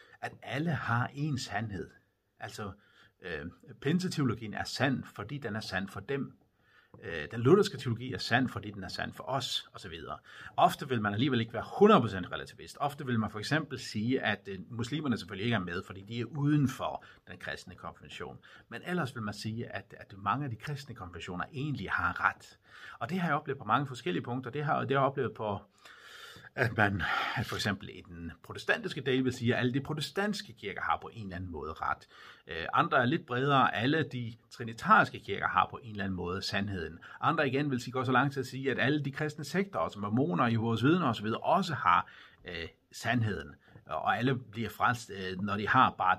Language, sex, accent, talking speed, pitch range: Danish, male, native, 210 wpm, 100-135 Hz